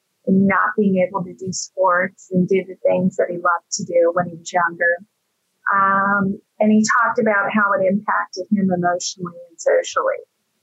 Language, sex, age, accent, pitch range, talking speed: English, female, 30-49, American, 185-220 Hz, 175 wpm